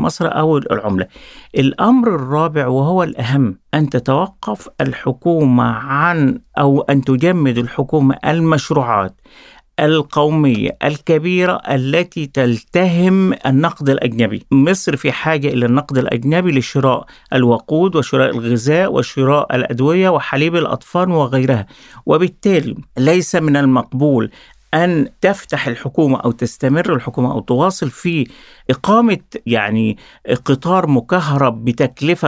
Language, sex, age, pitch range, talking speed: Arabic, male, 50-69, 135-185 Hz, 100 wpm